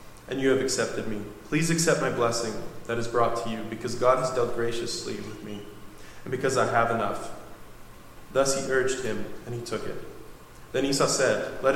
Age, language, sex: 20-39, English, male